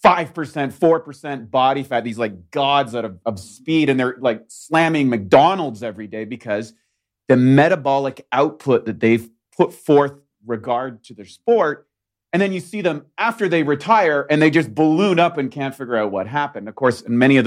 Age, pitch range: 30-49, 110-140 Hz